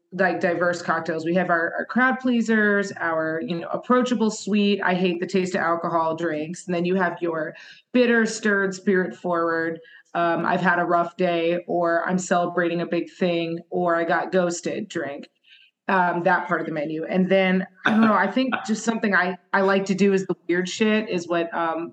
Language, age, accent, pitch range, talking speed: English, 30-49, American, 170-200 Hz, 200 wpm